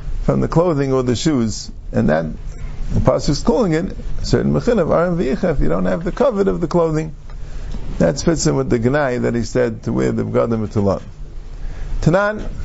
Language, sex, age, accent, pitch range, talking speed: English, male, 50-69, American, 120-180 Hz, 180 wpm